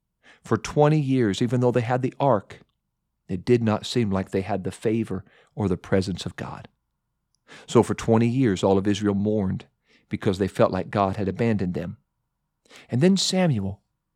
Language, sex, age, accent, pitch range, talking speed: English, male, 40-59, American, 105-145 Hz, 180 wpm